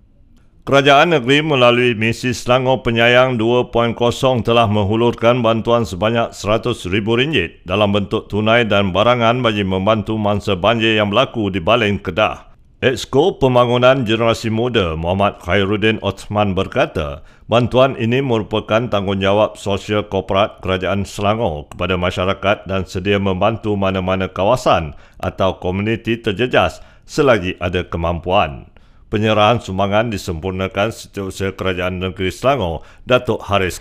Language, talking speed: Malay, 115 wpm